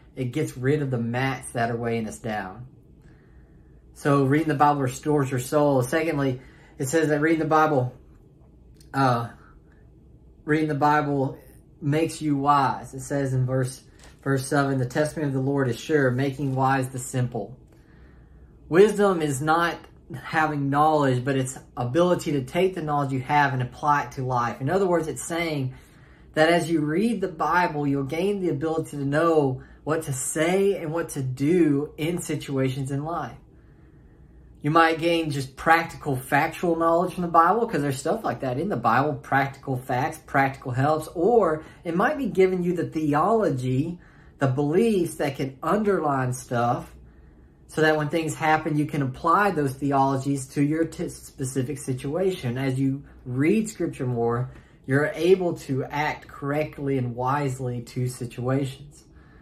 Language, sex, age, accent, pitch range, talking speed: English, male, 30-49, American, 130-160 Hz, 160 wpm